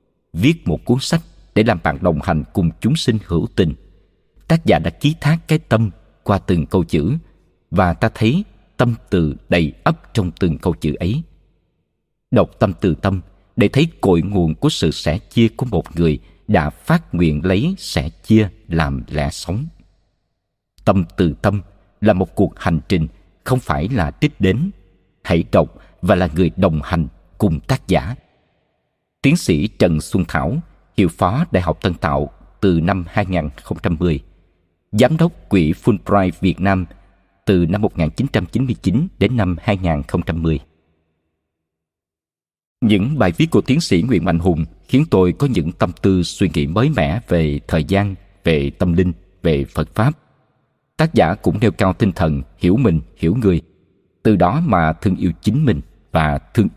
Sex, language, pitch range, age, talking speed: male, Vietnamese, 80-110 Hz, 50-69, 165 wpm